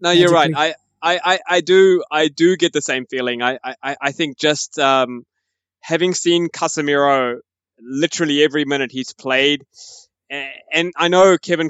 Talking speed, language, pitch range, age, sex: 160 wpm, English, 130-165 Hz, 20-39, male